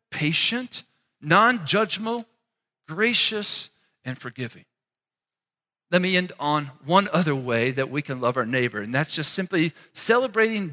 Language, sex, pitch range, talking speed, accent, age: English, male, 160-250 Hz, 135 wpm, American, 50-69